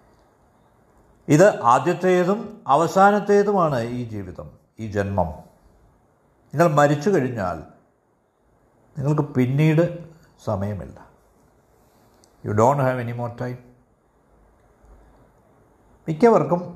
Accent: native